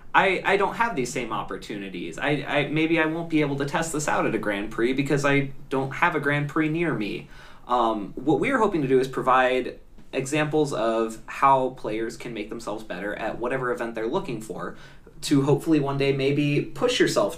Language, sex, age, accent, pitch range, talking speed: English, male, 20-39, American, 115-155 Hz, 210 wpm